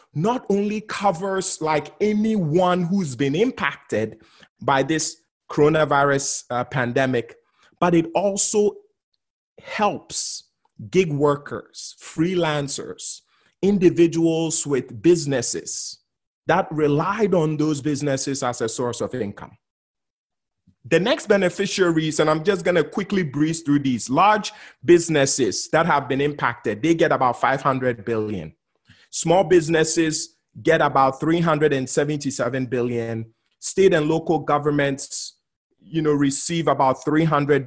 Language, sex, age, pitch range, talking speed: English, male, 30-49, 135-170 Hz, 110 wpm